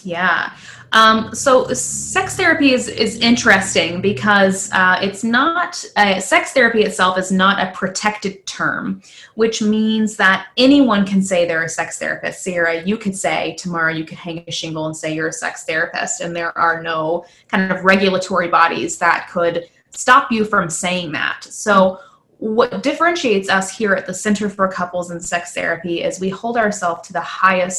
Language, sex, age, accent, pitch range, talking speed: English, female, 20-39, American, 175-210 Hz, 175 wpm